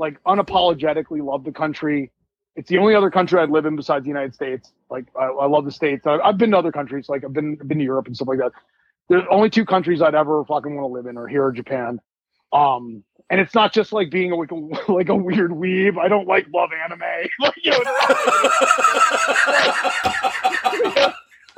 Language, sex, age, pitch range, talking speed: English, male, 30-49, 155-220 Hz, 210 wpm